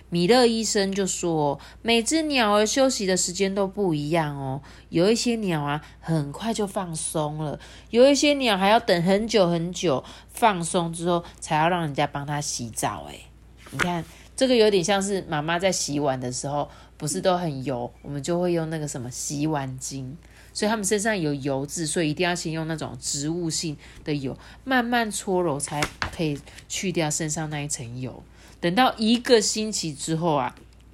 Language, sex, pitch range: Chinese, female, 155-210 Hz